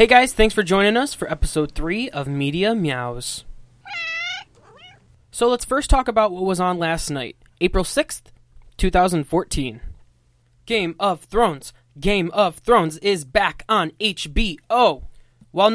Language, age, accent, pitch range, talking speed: English, 20-39, American, 145-210 Hz, 135 wpm